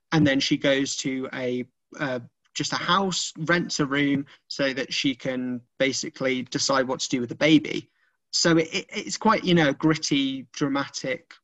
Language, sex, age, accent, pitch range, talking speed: English, male, 20-39, British, 135-170 Hz, 180 wpm